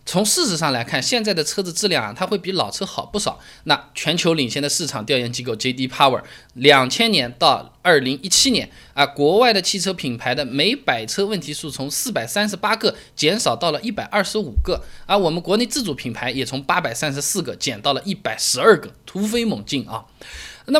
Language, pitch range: Chinese, 140-215 Hz